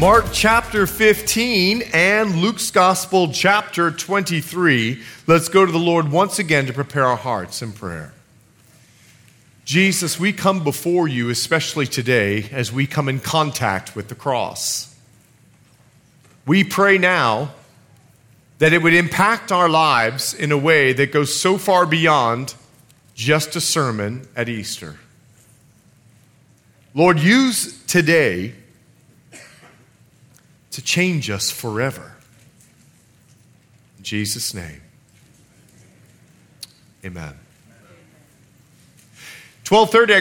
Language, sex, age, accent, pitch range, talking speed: English, male, 40-59, American, 125-190 Hz, 105 wpm